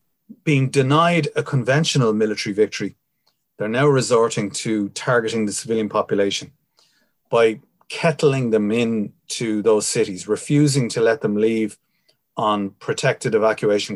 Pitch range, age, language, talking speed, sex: 110-150 Hz, 30-49, English, 125 wpm, male